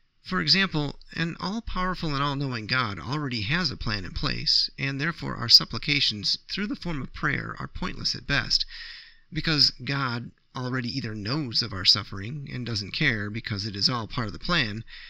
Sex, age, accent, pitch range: male, 30-49, American, 110-150 Hz